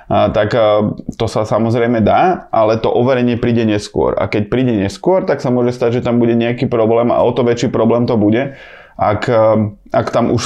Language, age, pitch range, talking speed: Slovak, 20-39, 105-120 Hz, 200 wpm